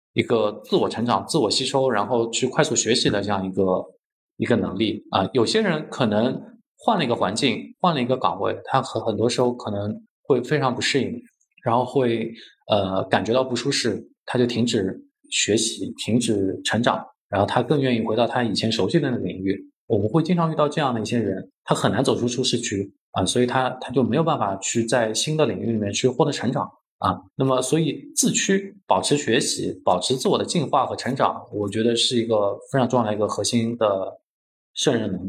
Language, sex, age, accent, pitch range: Chinese, male, 20-39, native, 110-150 Hz